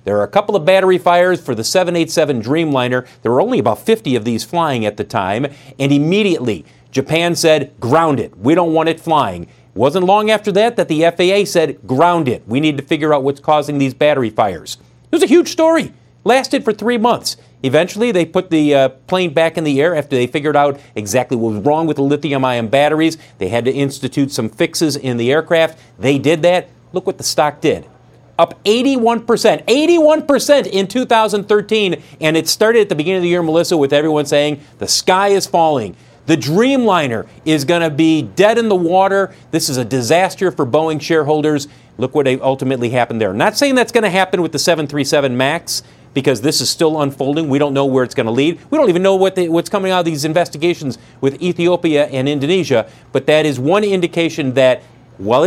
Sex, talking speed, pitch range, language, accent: male, 210 wpm, 140-185 Hz, English, American